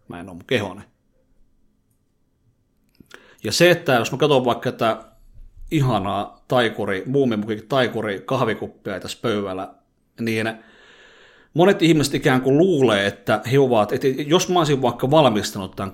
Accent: native